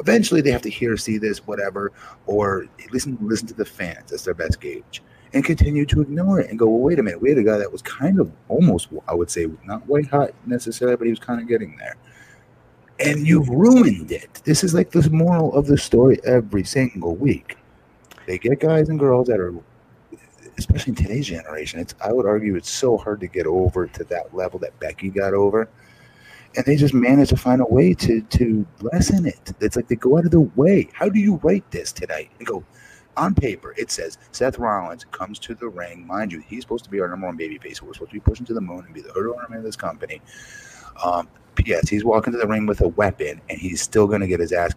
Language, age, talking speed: English, 30-49, 240 wpm